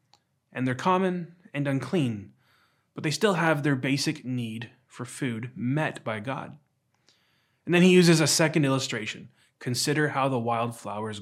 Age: 20-39